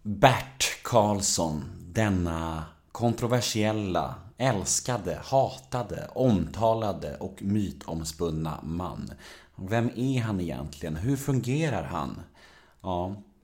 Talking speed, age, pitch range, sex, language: 80 wpm, 30-49, 80-115 Hz, male, Swedish